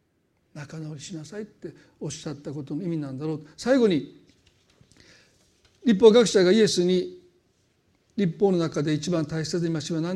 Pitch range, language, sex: 165-230 Hz, Japanese, male